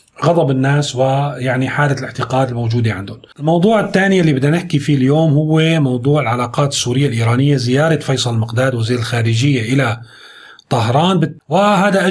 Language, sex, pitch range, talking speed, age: Arabic, male, 130-155 Hz, 135 wpm, 40-59